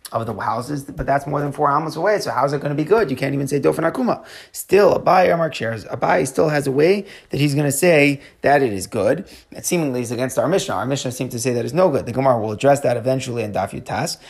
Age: 30-49